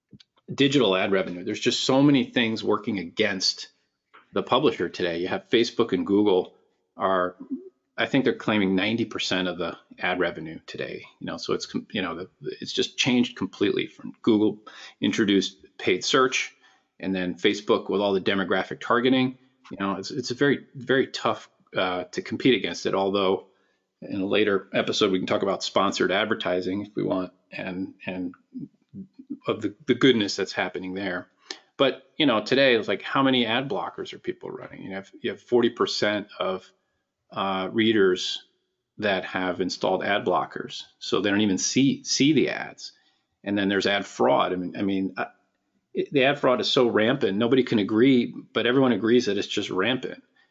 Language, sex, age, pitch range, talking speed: English, male, 40-59, 95-135 Hz, 175 wpm